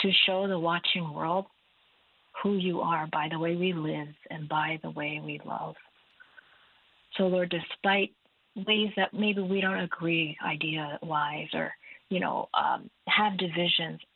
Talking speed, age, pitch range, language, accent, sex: 150 wpm, 40-59, 165-195 Hz, English, American, female